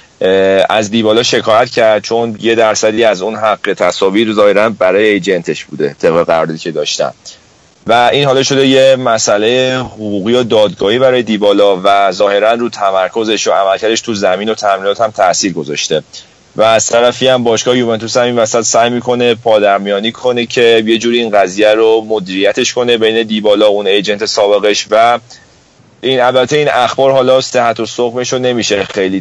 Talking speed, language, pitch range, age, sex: 160 wpm, Persian, 100-125 Hz, 30-49, male